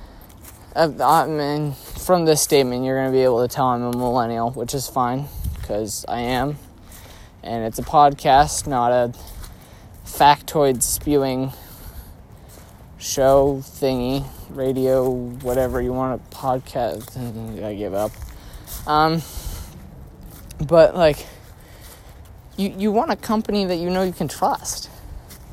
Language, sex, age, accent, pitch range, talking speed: English, male, 20-39, American, 115-165 Hz, 125 wpm